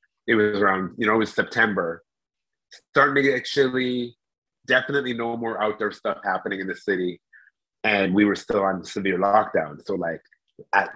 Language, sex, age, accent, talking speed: English, male, 30-49, American, 170 wpm